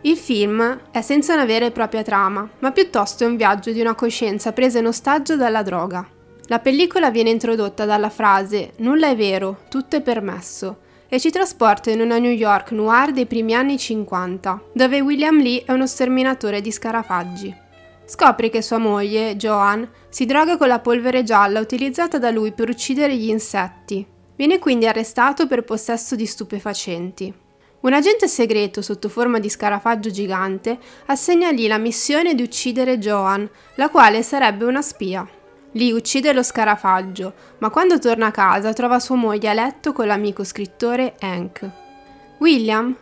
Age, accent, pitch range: 20-39, native, 210-265 Hz